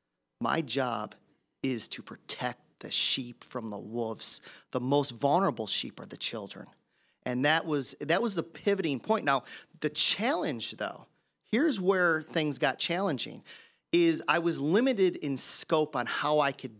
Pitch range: 125-165 Hz